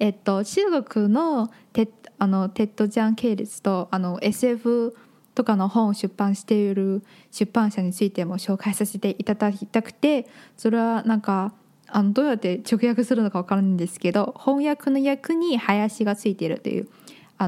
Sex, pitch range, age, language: female, 200-245 Hz, 10-29, Chinese